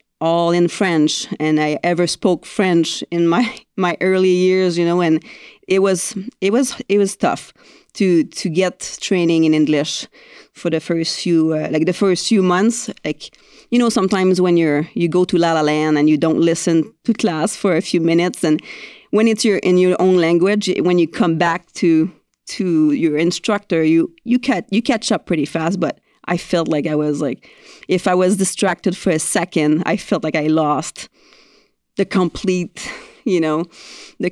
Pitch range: 160-195 Hz